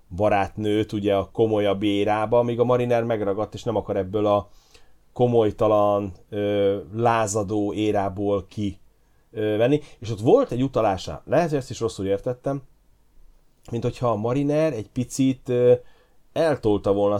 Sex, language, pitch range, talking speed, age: male, Hungarian, 100-120 Hz, 135 wpm, 30-49